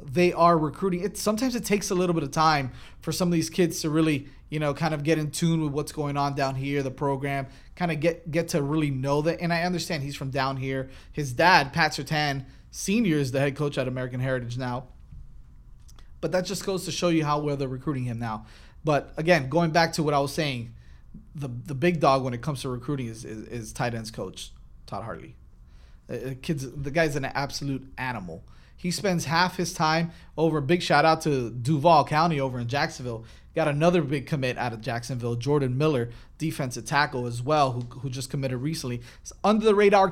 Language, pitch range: English, 130-170 Hz